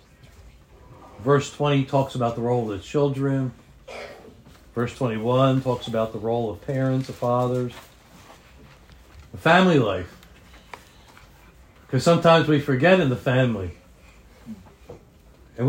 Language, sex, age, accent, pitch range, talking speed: English, male, 60-79, American, 115-160 Hz, 110 wpm